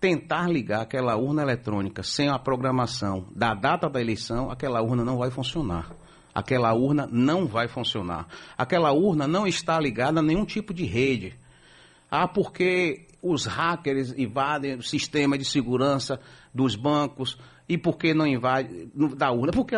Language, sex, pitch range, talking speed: Portuguese, male, 120-165 Hz, 150 wpm